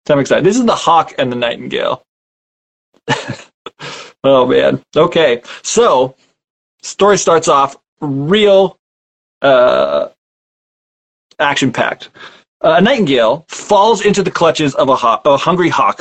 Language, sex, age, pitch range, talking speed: English, male, 20-39, 135-175 Hz, 110 wpm